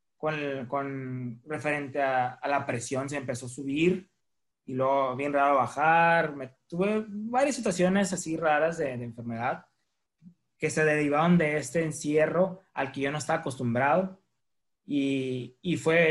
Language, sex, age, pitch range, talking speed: Spanish, male, 20-39, 140-180 Hz, 150 wpm